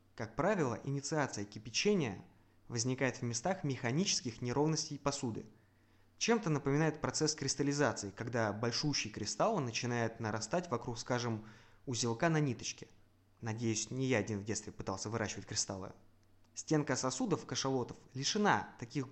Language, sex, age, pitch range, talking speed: Russian, male, 20-39, 110-145 Hz, 120 wpm